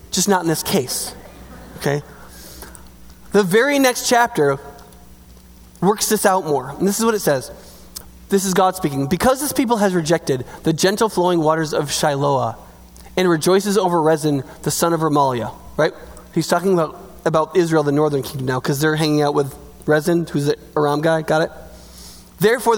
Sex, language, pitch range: male, English, 145-195 Hz